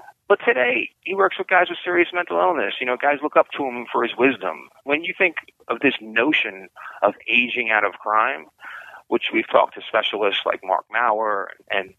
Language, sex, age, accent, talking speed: English, male, 30-49, American, 200 wpm